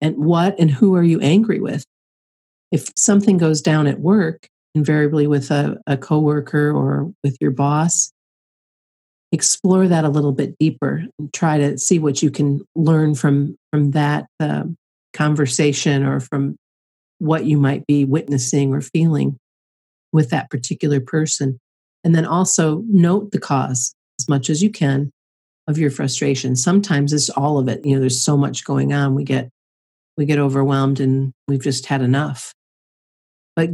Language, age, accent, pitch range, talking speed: English, 50-69, American, 135-155 Hz, 165 wpm